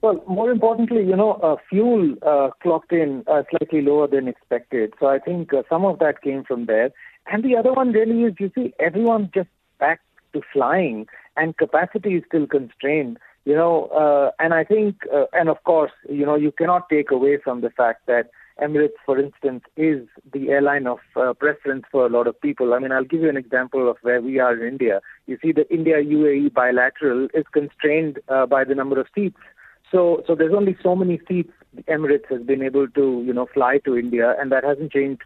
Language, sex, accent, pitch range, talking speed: English, male, Indian, 135-165 Hz, 210 wpm